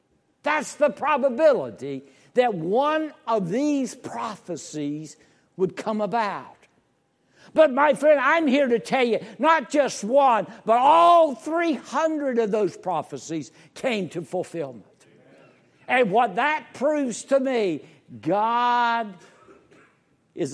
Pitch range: 165-270 Hz